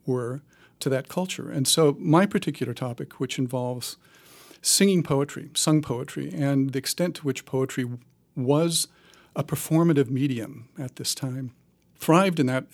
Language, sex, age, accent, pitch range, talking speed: English, male, 50-69, American, 130-155 Hz, 145 wpm